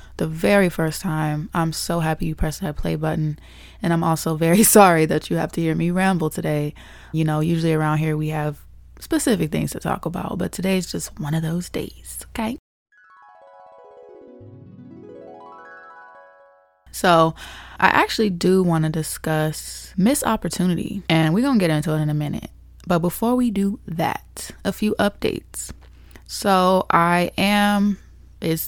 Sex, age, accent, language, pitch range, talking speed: female, 20-39, American, English, 155-200 Hz, 160 wpm